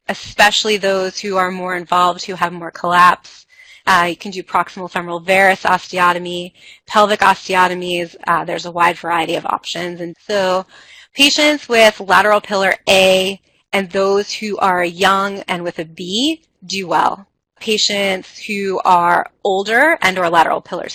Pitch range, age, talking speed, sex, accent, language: 175-210 Hz, 20-39, 150 wpm, female, American, English